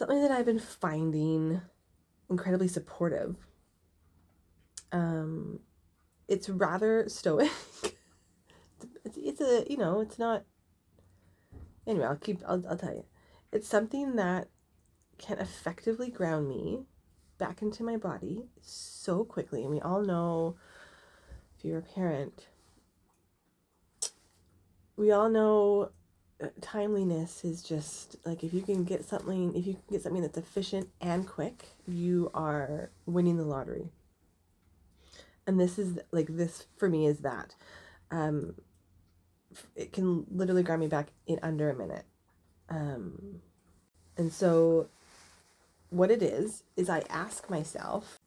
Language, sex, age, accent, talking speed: English, female, 30-49, American, 130 wpm